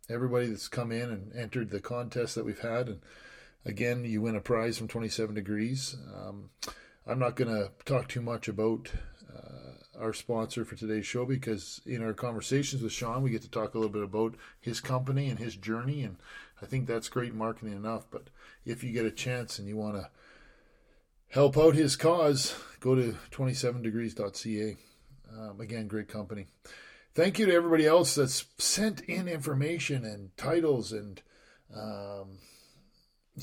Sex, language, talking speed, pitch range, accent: male, English, 170 wpm, 110-130 Hz, American